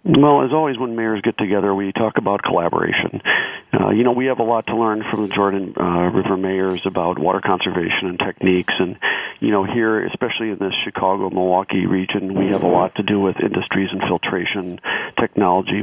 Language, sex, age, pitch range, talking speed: English, male, 40-59, 95-120 Hz, 195 wpm